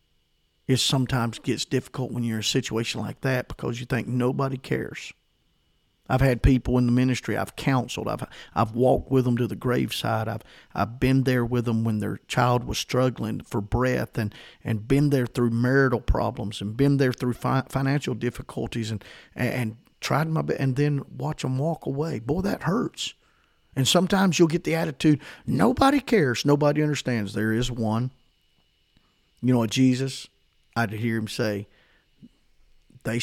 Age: 40-59